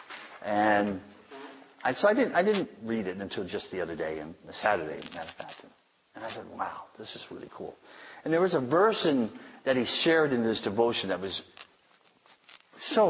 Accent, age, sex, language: American, 50-69, male, English